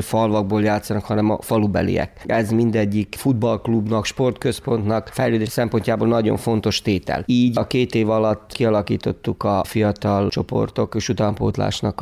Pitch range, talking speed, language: 100-115 Hz, 125 wpm, Hungarian